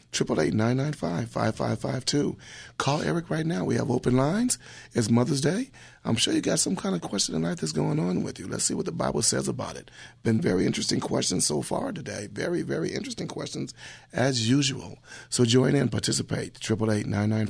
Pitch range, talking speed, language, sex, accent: 110-130 Hz, 180 wpm, English, male, American